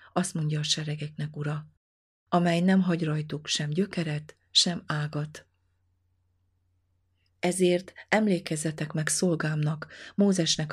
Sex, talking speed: female, 100 wpm